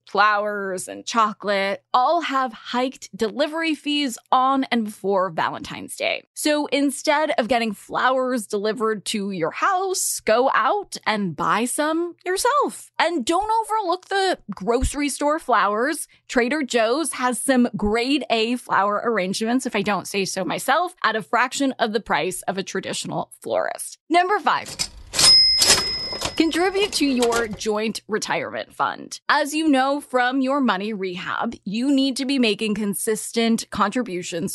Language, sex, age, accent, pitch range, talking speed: English, female, 20-39, American, 210-290 Hz, 140 wpm